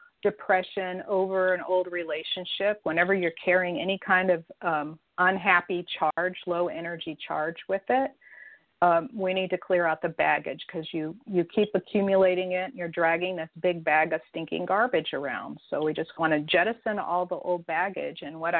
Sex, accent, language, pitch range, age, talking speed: female, American, English, 160-190 Hz, 40-59, 170 wpm